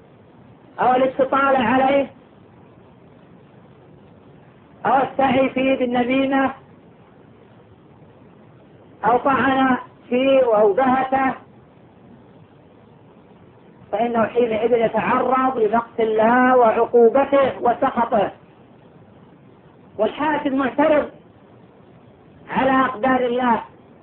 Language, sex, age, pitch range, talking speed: Arabic, female, 40-59, 245-275 Hz, 55 wpm